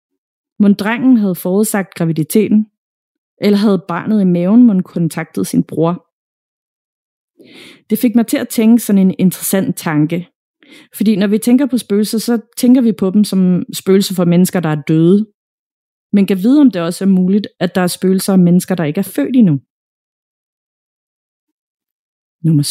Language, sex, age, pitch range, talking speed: Danish, female, 30-49, 185-250 Hz, 165 wpm